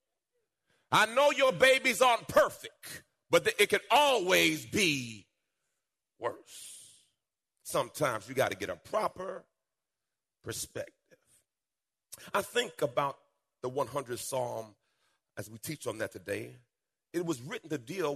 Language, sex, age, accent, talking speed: English, male, 40-59, American, 120 wpm